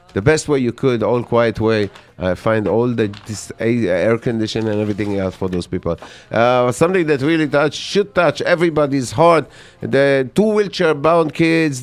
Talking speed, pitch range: 170 wpm, 105-135 Hz